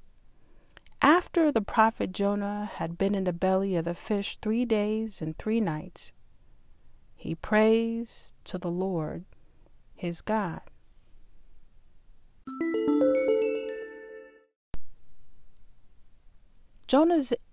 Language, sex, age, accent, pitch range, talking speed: English, female, 30-49, American, 180-240 Hz, 85 wpm